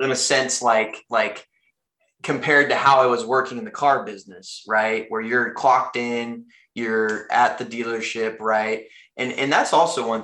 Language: English